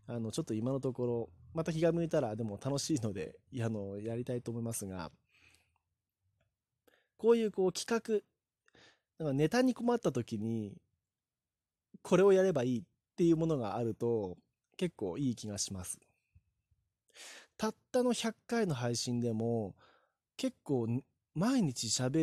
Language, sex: Japanese, male